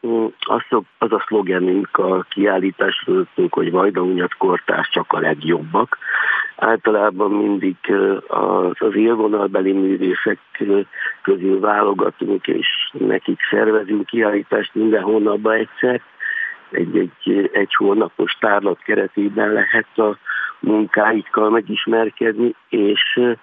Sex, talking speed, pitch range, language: male, 95 wpm, 100-120 Hz, Hungarian